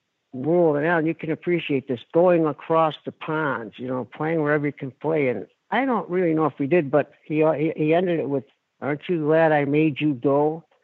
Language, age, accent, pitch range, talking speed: English, 60-79, American, 130-170 Hz, 215 wpm